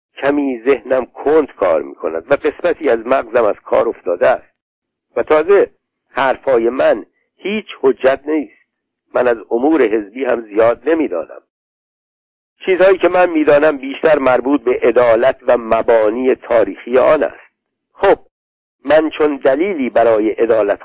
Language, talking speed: Persian, 140 wpm